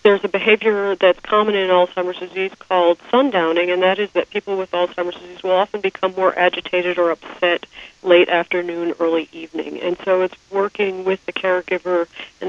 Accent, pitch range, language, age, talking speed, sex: American, 170-195 Hz, English, 50-69, 180 wpm, female